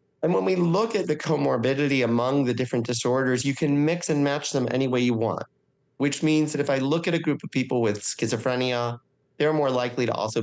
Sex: male